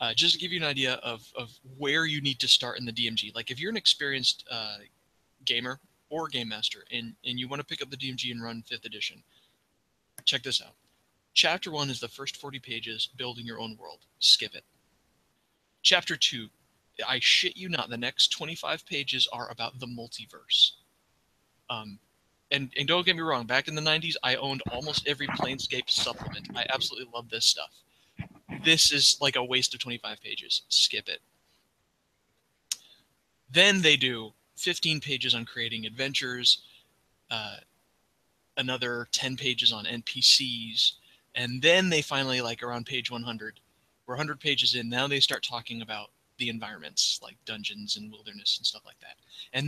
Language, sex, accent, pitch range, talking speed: English, male, American, 120-145 Hz, 175 wpm